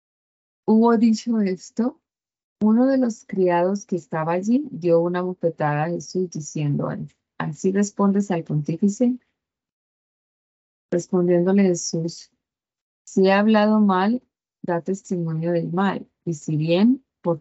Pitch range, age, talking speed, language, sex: 165-205 Hz, 30-49, 120 wpm, Spanish, female